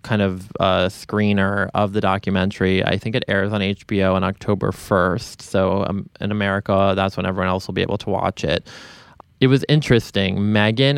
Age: 20-39